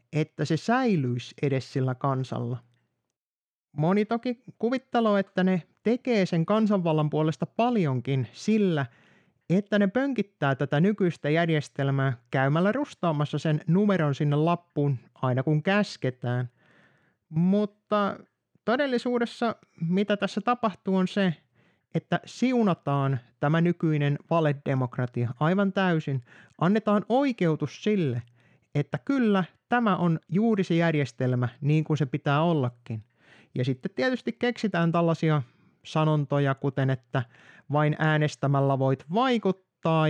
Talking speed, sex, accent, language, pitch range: 110 wpm, male, native, Finnish, 135-195 Hz